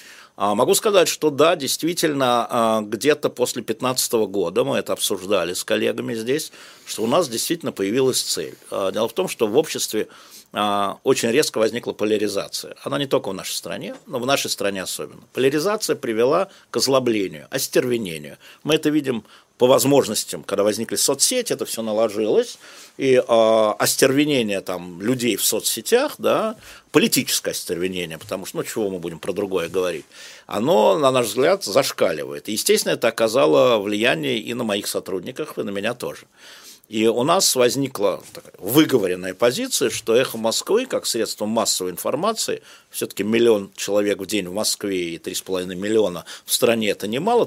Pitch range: 110-150 Hz